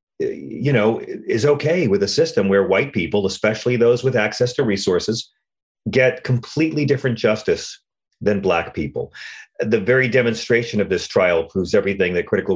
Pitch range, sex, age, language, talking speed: 105-145 Hz, male, 40-59, English, 160 wpm